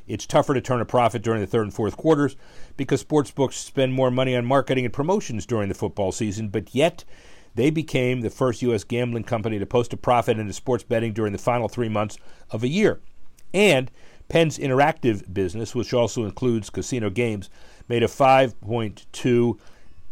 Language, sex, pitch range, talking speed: English, male, 100-125 Hz, 180 wpm